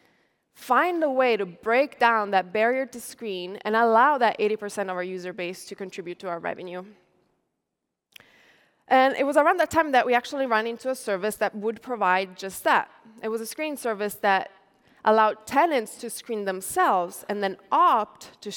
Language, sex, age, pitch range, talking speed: English, female, 20-39, 195-245 Hz, 180 wpm